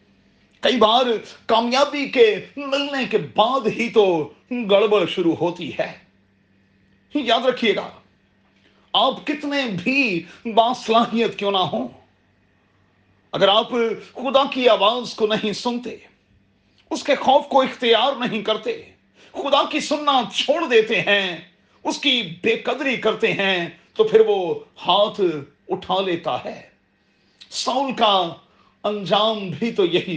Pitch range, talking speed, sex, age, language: 165-245 Hz, 125 wpm, male, 40-59, Urdu